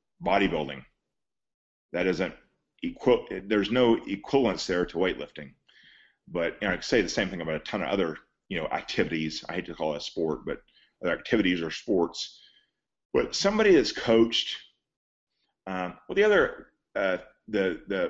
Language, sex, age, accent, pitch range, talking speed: English, male, 40-59, American, 95-150 Hz, 165 wpm